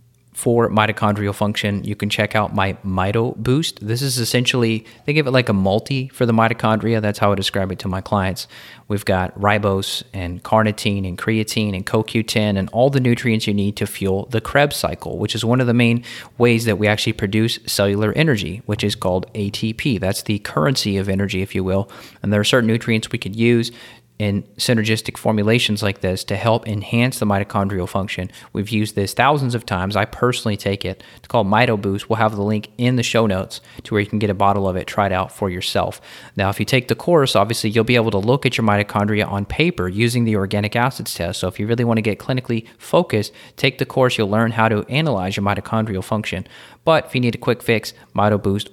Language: English